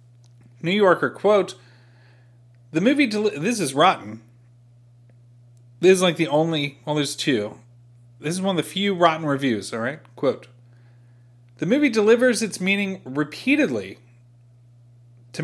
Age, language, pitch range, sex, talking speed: 30-49, English, 120-170 Hz, male, 130 wpm